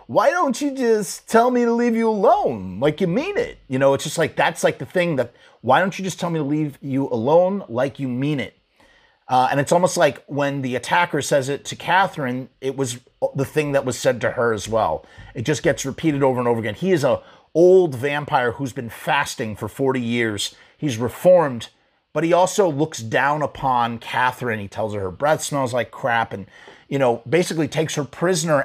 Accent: American